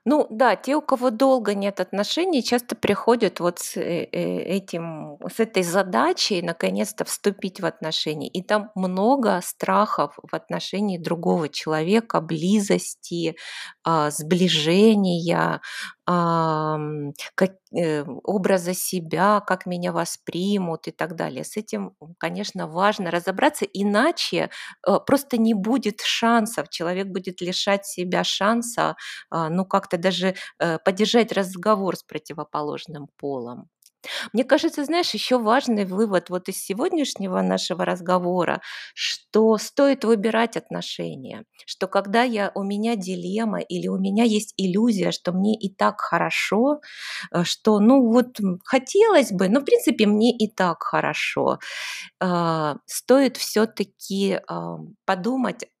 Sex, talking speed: female, 120 wpm